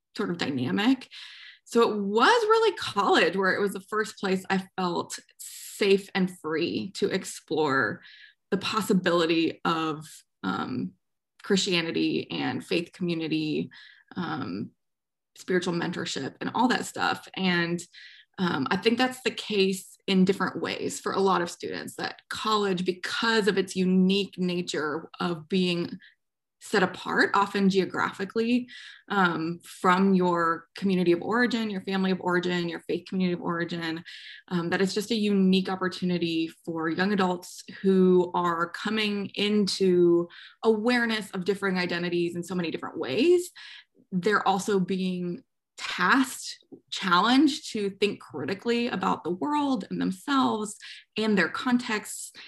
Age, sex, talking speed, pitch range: 20-39, female, 135 wpm, 180-215 Hz